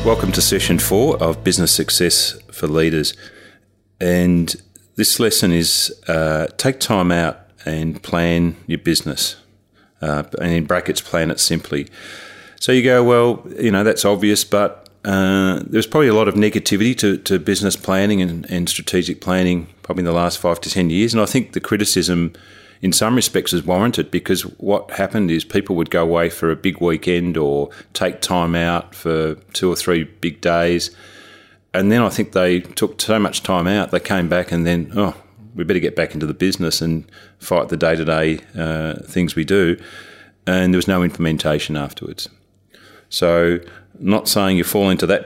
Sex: male